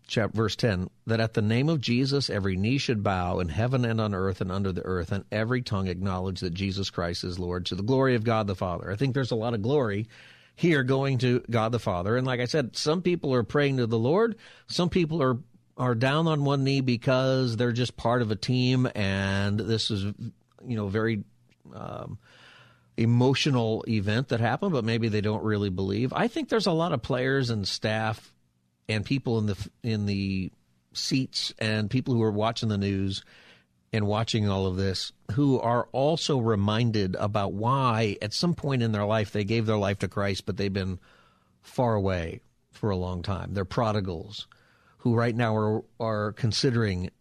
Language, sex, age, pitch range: English, male, 40-59, 100-125 Hz